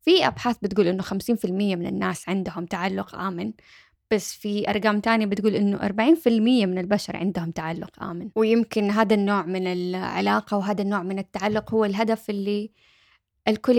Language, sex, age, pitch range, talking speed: Arabic, female, 10-29, 195-235 Hz, 150 wpm